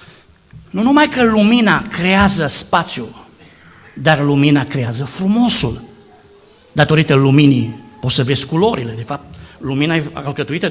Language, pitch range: Romanian, 130-200 Hz